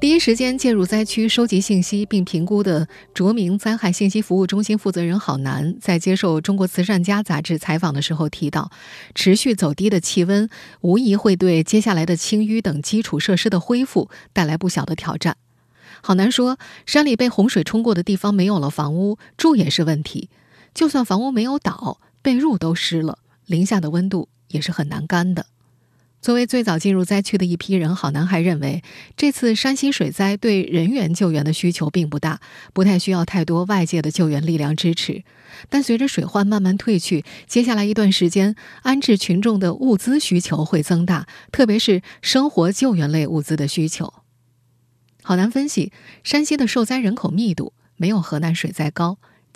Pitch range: 165-215 Hz